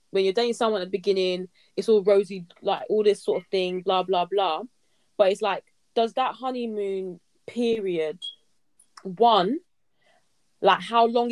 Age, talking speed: 20-39, 160 wpm